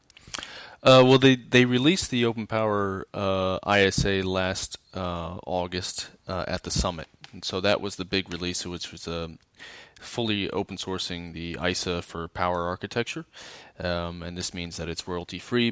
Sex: male